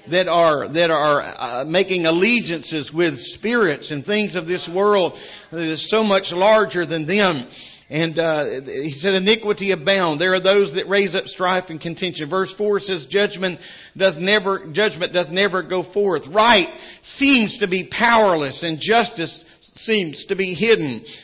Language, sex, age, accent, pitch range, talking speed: English, male, 50-69, American, 170-210 Hz, 165 wpm